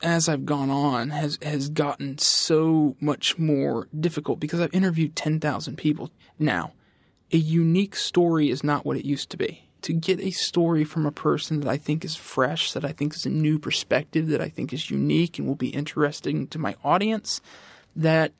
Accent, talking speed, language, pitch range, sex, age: American, 190 wpm, English, 145-175 Hz, male, 20-39